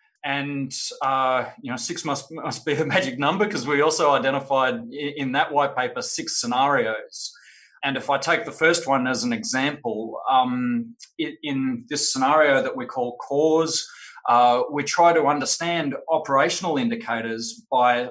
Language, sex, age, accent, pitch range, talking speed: English, male, 20-39, Australian, 125-160 Hz, 160 wpm